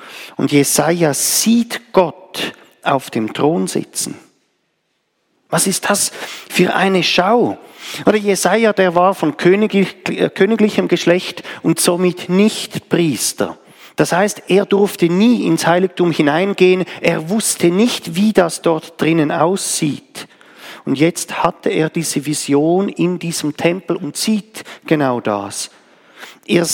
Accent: German